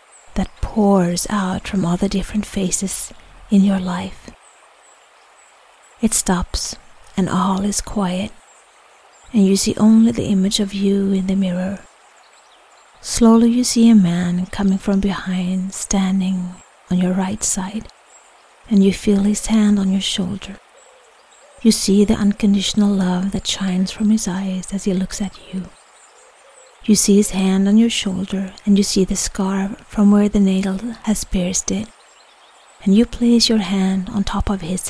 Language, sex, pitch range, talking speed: English, female, 190-210 Hz, 160 wpm